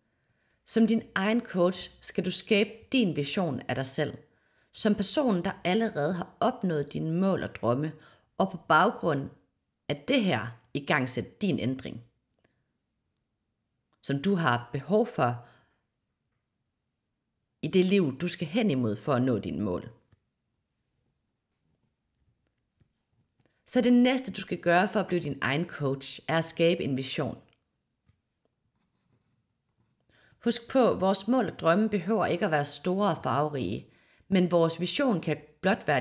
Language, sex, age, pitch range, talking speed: Danish, female, 30-49, 125-195 Hz, 140 wpm